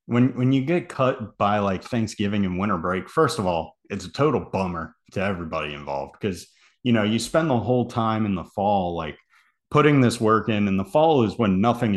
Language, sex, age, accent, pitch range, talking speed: English, male, 30-49, American, 100-125 Hz, 215 wpm